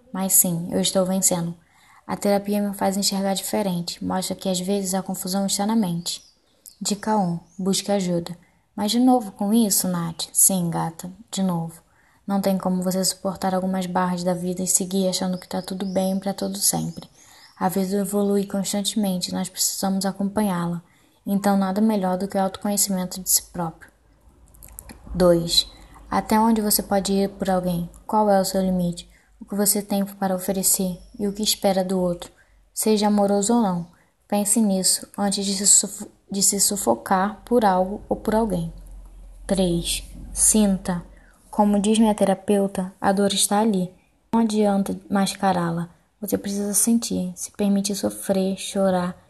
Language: Portuguese